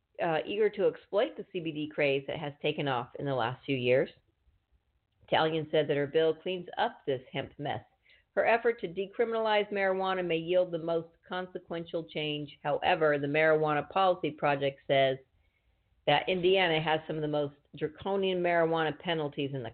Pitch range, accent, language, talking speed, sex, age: 145-180 Hz, American, English, 165 wpm, female, 50-69